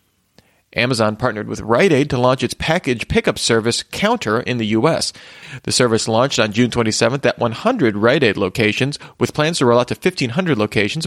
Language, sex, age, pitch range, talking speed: English, male, 40-59, 110-140 Hz, 185 wpm